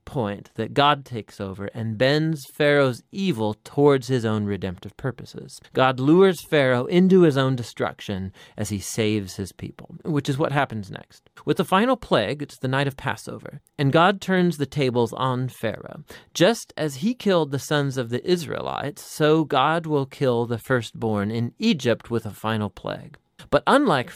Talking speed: 175 wpm